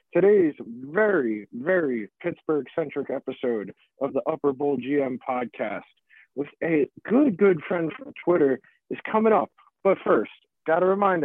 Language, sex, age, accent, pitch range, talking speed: English, male, 40-59, American, 155-205 Hz, 140 wpm